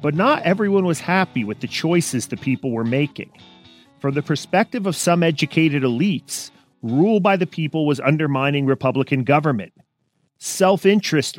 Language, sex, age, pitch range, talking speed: English, male, 40-59, 115-155 Hz, 150 wpm